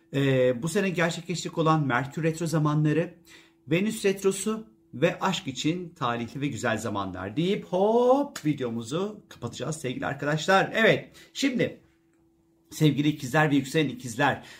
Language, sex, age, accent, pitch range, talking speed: Turkish, male, 50-69, native, 135-175 Hz, 125 wpm